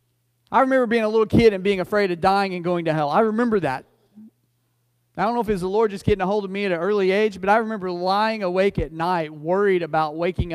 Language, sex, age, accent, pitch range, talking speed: English, male, 40-59, American, 155-215 Hz, 260 wpm